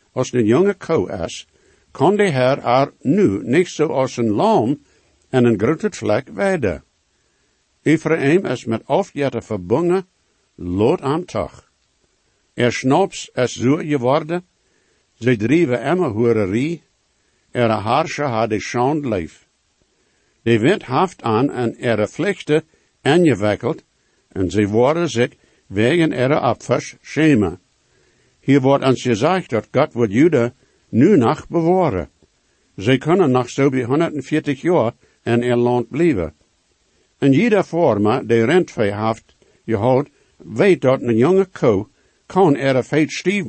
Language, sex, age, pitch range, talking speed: English, male, 60-79, 115-155 Hz, 140 wpm